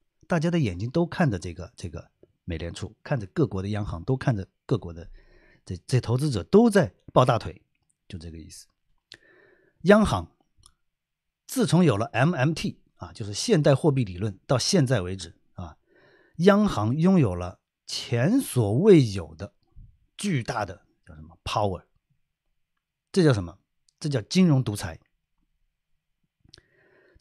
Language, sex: Chinese, male